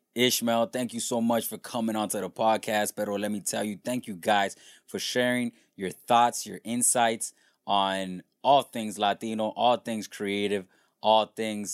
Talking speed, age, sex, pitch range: 170 wpm, 20-39, male, 105-120 Hz